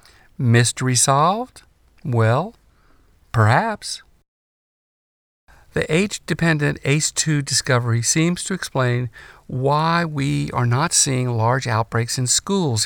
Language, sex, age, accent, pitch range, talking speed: English, male, 50-69, American, 115-155 Hz, 95 wpm